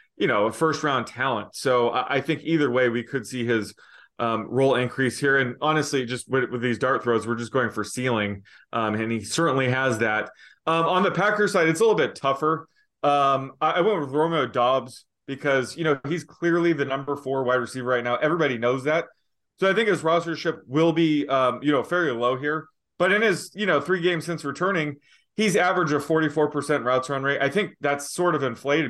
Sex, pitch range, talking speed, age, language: male, 120-160 Hz, 220 wpm, 20-39, English